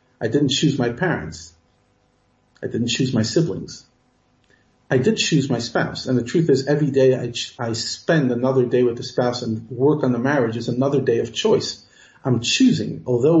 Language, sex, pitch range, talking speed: English, male, 125-155 Hz, 190 wpm